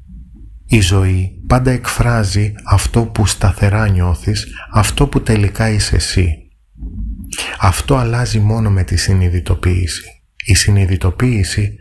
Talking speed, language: 105 wpm, Greek